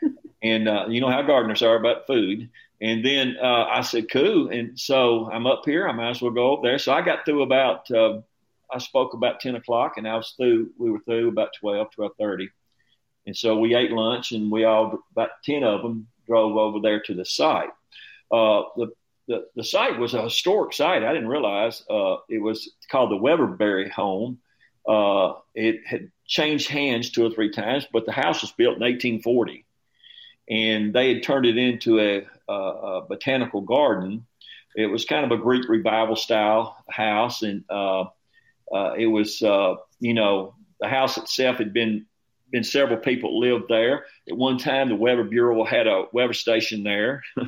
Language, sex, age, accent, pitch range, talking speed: English, male, 50-69, American, 110-135 Hz, 190 wpm